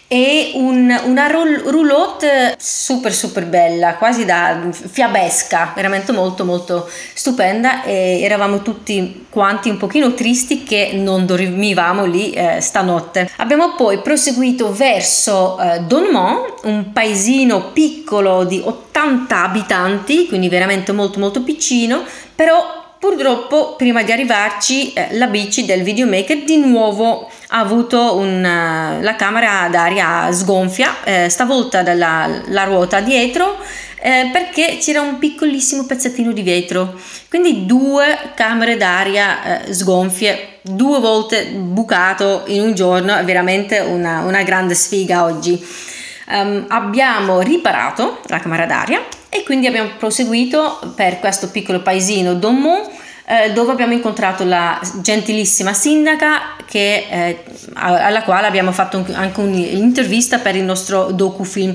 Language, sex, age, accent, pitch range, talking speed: Italian, female, 30-49, native, 185-255 Hz, 120 wpm